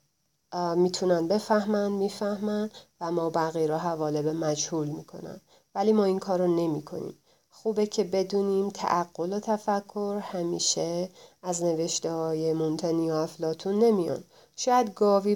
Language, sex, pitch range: English, female, 160-200 Hz